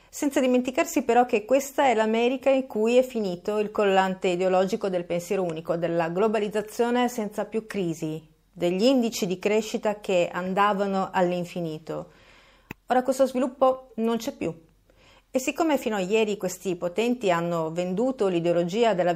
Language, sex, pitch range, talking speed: Italian, female, 180-250 Hz, 145 wpm